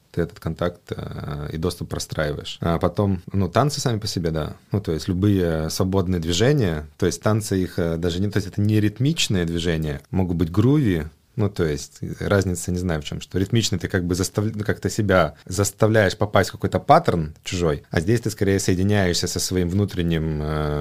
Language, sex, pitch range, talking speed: Russian, male, 85-100 Hz, 185 wpm